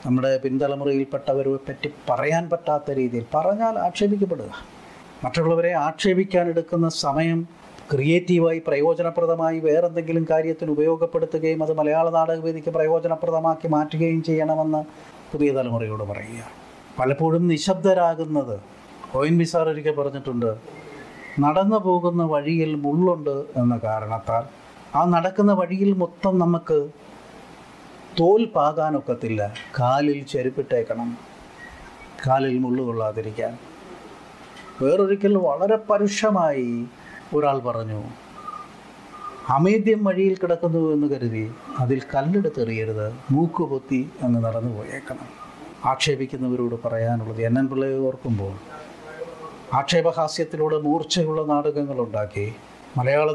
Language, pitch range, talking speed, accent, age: Malayalam, 130-165 Hz, 80 wpm, native, 30-49